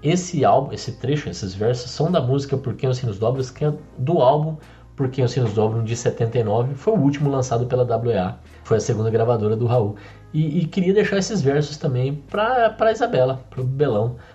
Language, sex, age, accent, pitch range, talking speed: Portuguese, male, 20-39, Brazilian, 115-150 Hz, 190 wpm